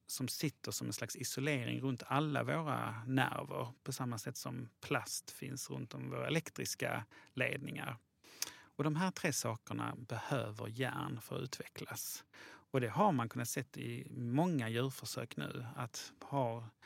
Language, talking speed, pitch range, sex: English, 155 wpm, 115-140 Hz, male